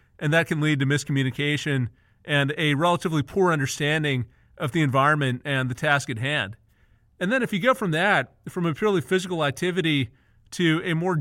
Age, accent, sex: 30-49, American, male